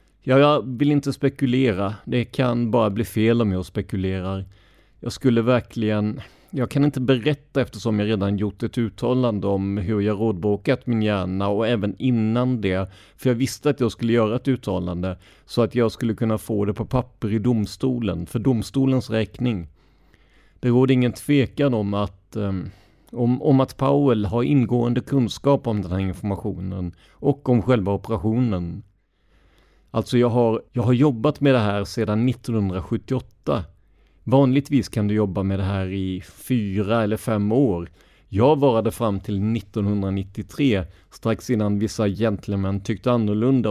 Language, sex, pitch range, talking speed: Swedish, male, 100-130 Hz, 155 wpm